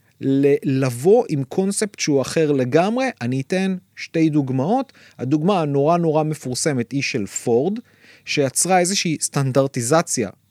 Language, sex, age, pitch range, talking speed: Hebrew, male, 30-49, 140-190 Hz, 115 wpm